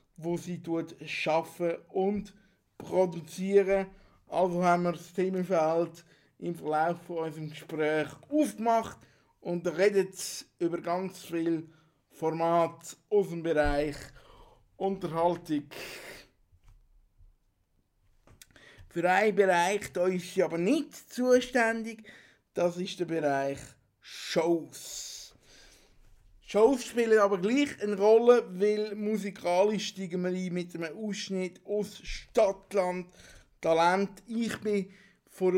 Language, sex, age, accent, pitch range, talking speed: German, male, 50-69, Austrian, 165-205 Hz, 100 wpm